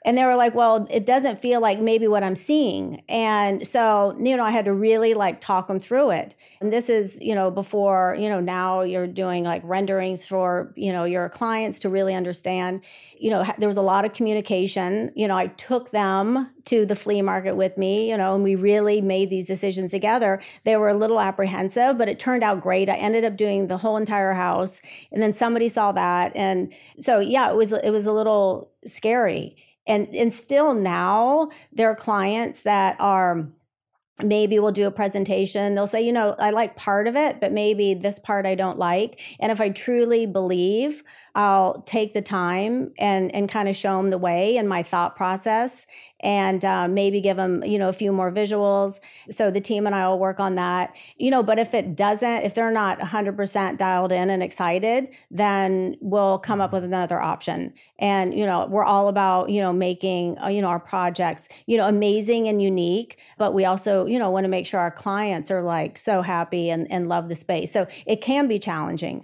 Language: English